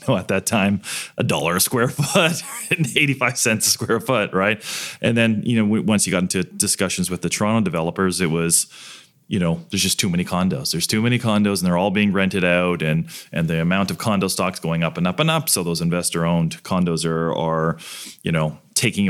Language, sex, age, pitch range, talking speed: English, male, 30-49, 90-110 Hz, 225 wpm